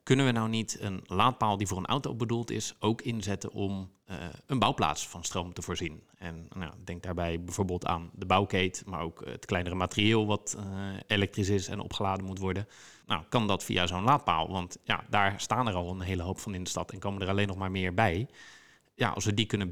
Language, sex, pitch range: English, male, 90-110 Hz